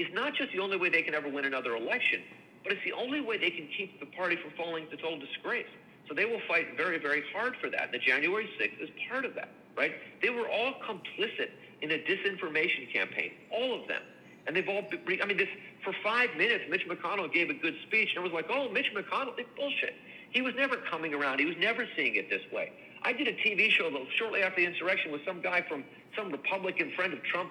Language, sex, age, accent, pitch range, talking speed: English, male, 50-69, American, 160-250 Hz, 235 wpm